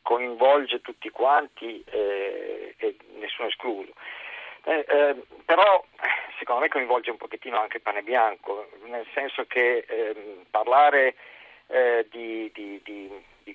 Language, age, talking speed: Italian, 50-69, 120 wpm